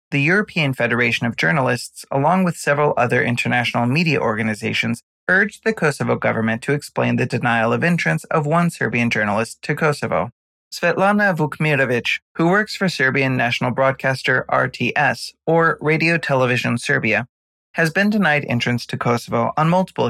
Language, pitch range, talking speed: English, 120-170 Hz, 145 wpm